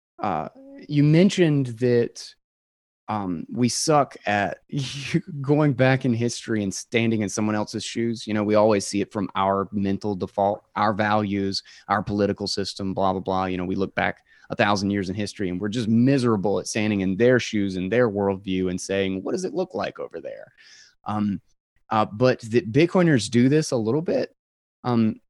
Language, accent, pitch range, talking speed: English, American, 100-125 Hz, 185 wpm